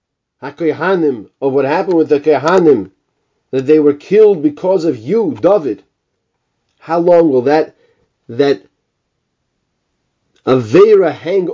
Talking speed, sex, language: 115 wpm, male, English